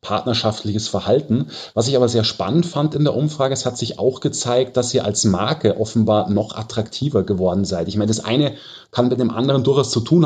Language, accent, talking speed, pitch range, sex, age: German, German, 210 wpm, 110-140 Hz, male, 30-49